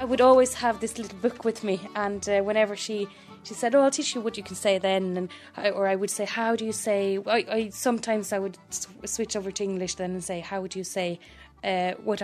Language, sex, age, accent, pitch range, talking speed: English, female, 20-39, Irish, 190-220 Hz, 260 wpm